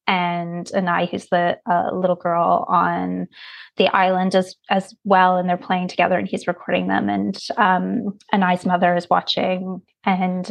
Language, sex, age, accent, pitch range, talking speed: English, female, 20-39, American, 180-205 Hz, 160 wpm